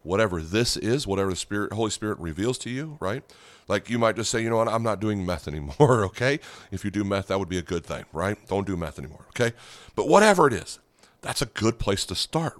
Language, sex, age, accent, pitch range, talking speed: English, male, 40-59, American, 95-120 Hz, 250 wpm